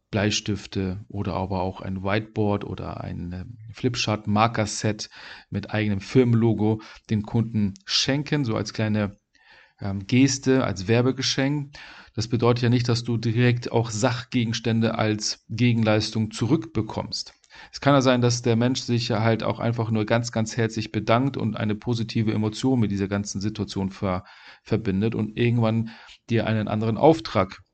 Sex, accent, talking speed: male, German, 145 wpm